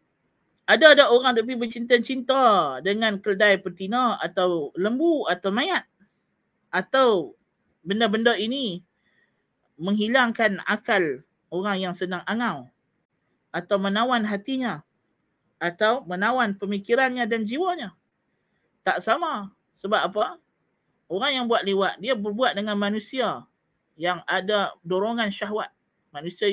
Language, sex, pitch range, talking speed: Malay, male, 180-235 Hz, 100 wpm